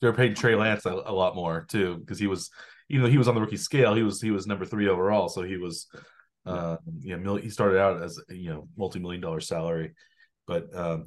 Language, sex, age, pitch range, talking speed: English, male, 30-49, 90-120 Hz, 235 wpm